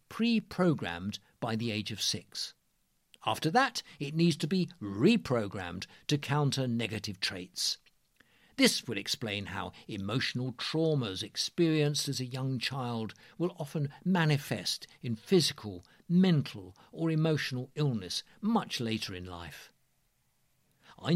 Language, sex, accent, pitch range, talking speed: English, male, British, 105-155 Hz, 120 wpm